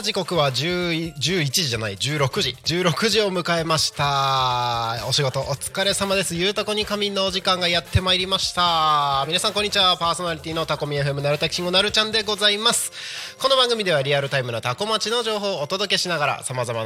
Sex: male